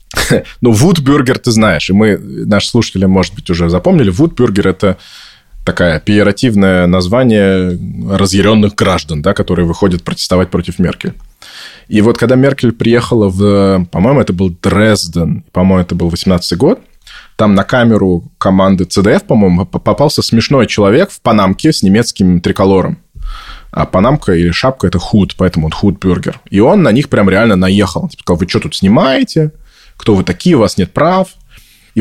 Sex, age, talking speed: male, 20-39, 155 wpm